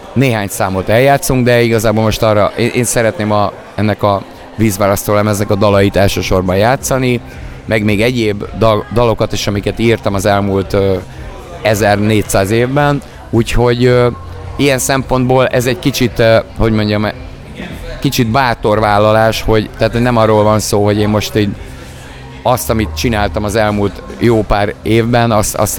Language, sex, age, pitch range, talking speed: Hungarian, male, 30-49, 100-120 Hz, 140 wpm